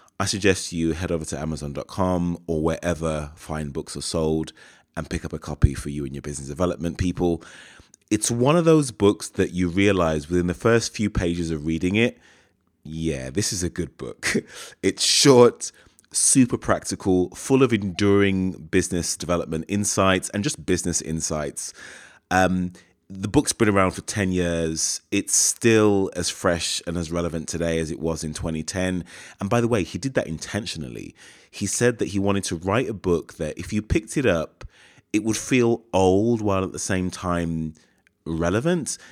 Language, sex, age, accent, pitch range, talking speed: English, male, 30-49, British, 85-100 Hz, 175 wpm